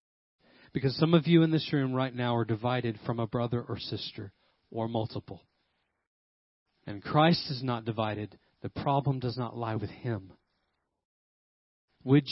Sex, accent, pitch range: male, American, 115-145 Hz